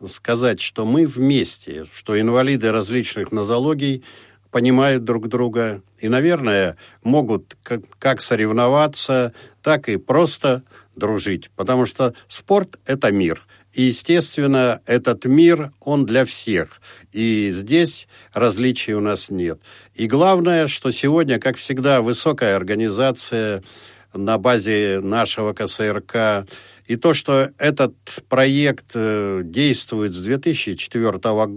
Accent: native